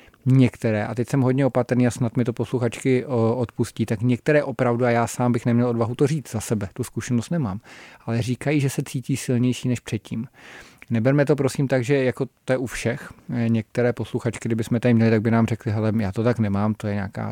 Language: Czech